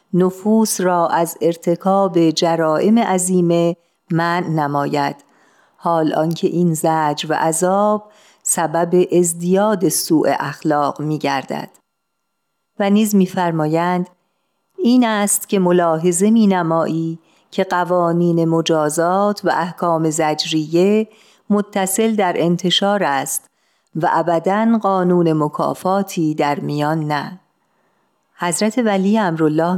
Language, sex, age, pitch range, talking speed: Persian, female, 40-59, 160-195 Hz, 100 wpm